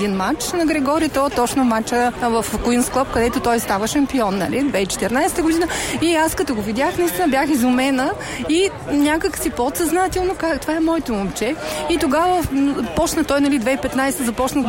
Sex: female